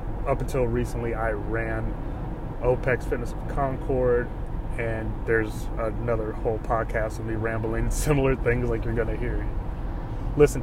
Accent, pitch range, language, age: American, 110-125 Hz, English, 20-39